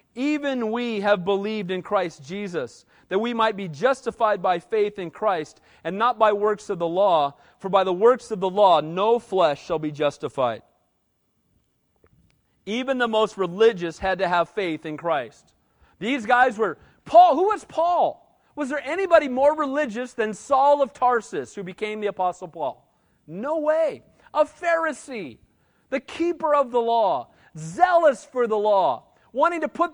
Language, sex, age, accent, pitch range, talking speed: English, male, 40-59, American, 190-270 Hz, 165 wpm